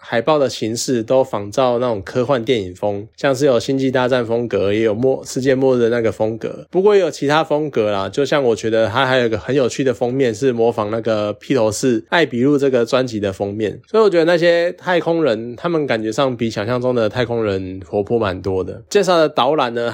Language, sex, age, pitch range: Chinese, male, 20-39, 115-145 Hz